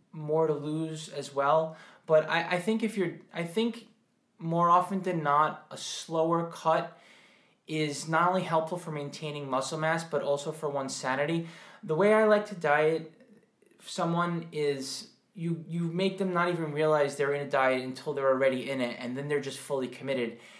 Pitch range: 135-175 Hz